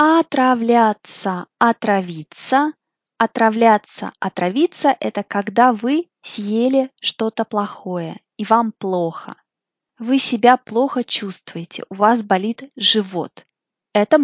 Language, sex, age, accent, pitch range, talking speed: Russian, female, 20-39, native, 205-270 Hz, 95 wpm